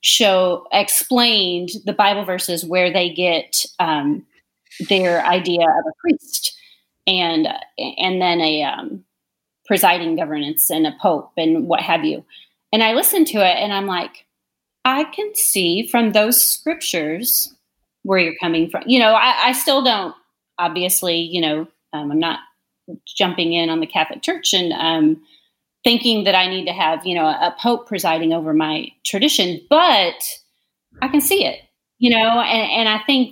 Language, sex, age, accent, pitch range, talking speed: English, female, 30-49, American, 170-230 Hz, 165 wpm